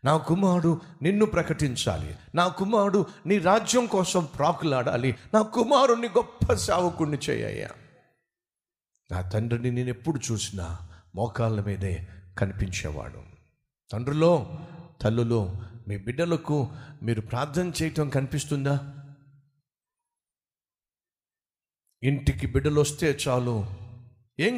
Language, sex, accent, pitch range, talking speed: Telugu, male, native, 120-160 Hz, 85 wpm